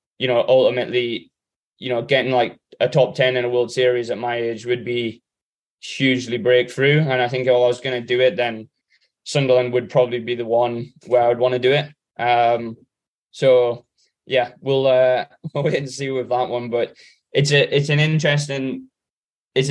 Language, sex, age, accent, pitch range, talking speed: English, male, 10-29, British, 120-135 Hz, 195 wpm